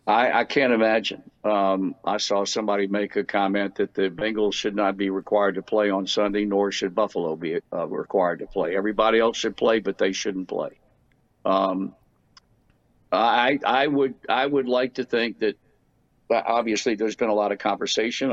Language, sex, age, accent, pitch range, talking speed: English, male, 60-79, American, 100-115 Hz, 180 wpm